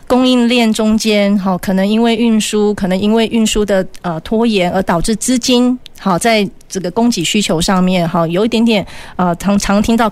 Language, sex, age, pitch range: Chinese, female, 30-49, 180-225 Hz